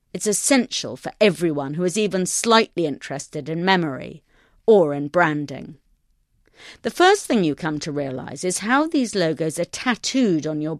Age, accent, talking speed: 40-59, British, 160 wpm